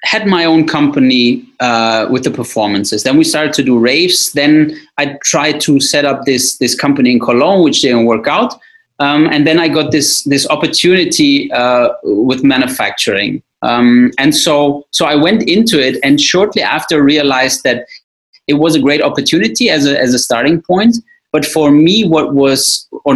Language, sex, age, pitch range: English, male, 30-49, 140-195 Hz